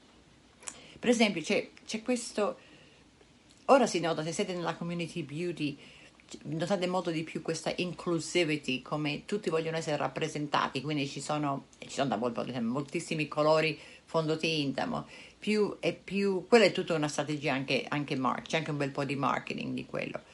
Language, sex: Italian, female